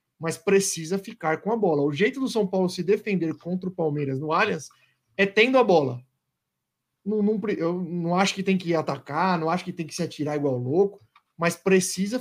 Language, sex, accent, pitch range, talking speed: Portuguese, male, Brazilian, 155-210 Hz, 190 wpm